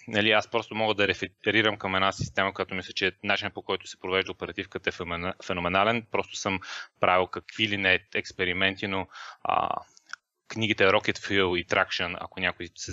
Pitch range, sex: 95-110 Hz, male